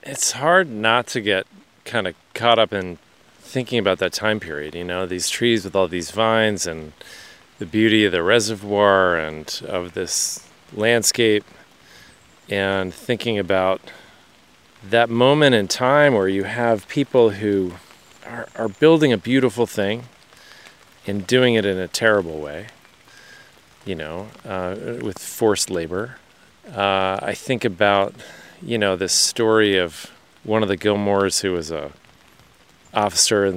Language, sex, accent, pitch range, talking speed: English, male, American, 95-115 Hz, 145 wpm